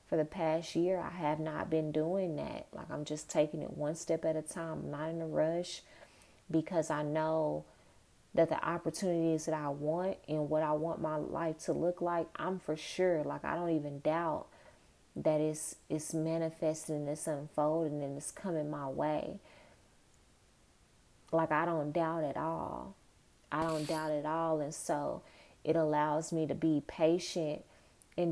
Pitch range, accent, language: 150-170 Hz, American, English